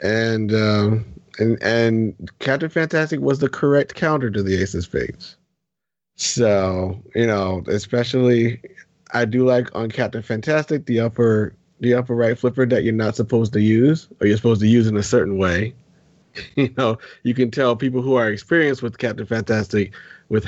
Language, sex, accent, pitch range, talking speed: English, male, American, 105-130 Hz, 170 wpm